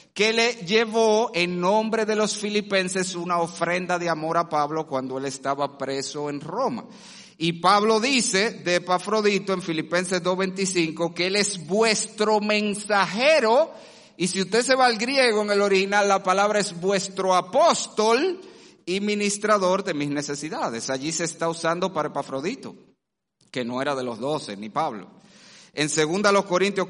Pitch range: 155-200 Hz